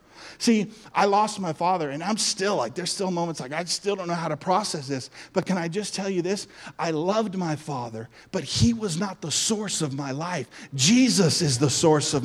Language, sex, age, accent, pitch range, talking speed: English, male, 40-59, American, 165-220 Hz, 225 wpm